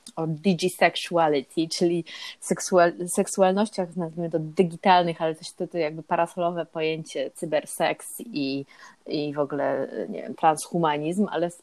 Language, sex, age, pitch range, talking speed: Polish, female, 30-49, 170-200 Hz, 135 wpm